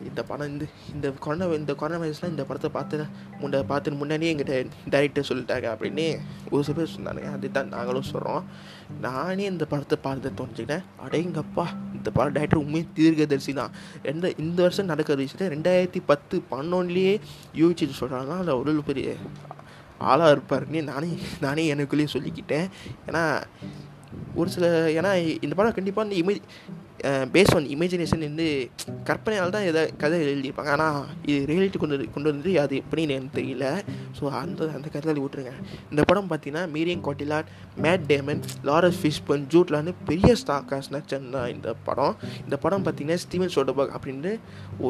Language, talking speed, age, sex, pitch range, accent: Tamil, 150 wpm, 20-39, male, 140-170 Hz, native